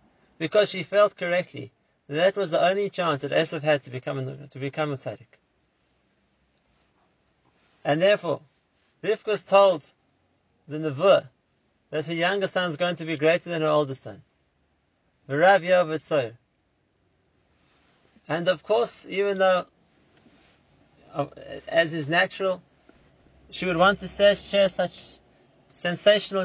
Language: English